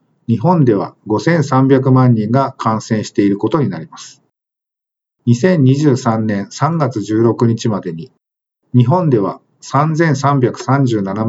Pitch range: 115-145 Hz